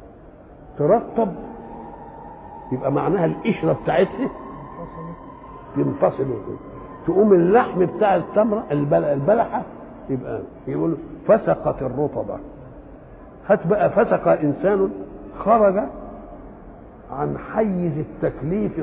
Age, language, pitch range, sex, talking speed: 50-69, English, 140-200 Hz, male, 75 wpm